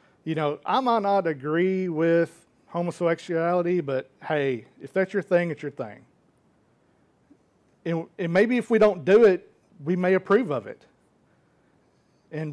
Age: 50-69